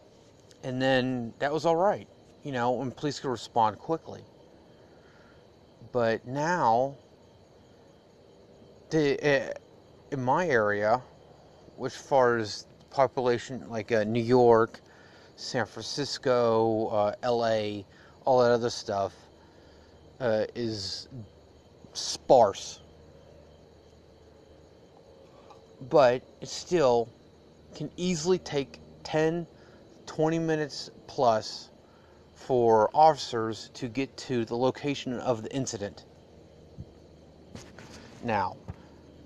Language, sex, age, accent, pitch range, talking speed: English, male, 30-49, American, 100-130 Hz, 90 wpm